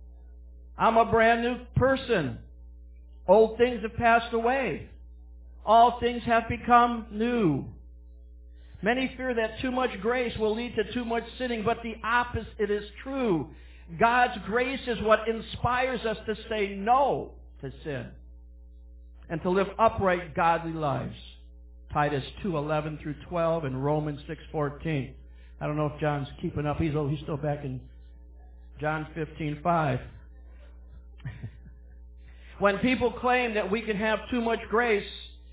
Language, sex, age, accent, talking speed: English, male, 60-79, American, 135 wpm